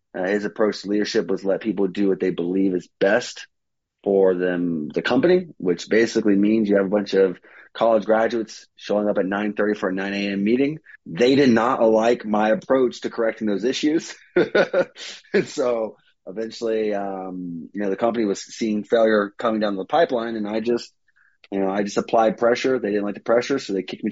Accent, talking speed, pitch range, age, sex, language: American, 200 wpm, 95-110 Hz, 30-49, male, English